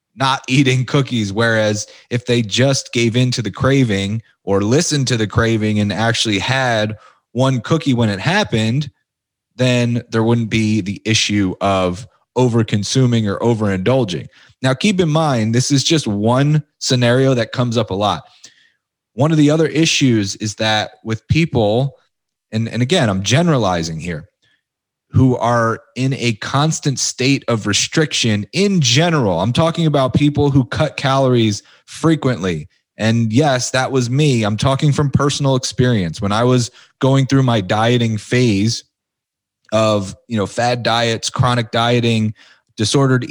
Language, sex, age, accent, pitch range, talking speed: English, male, 30-49, American, 110-135 Hz, 150 wpm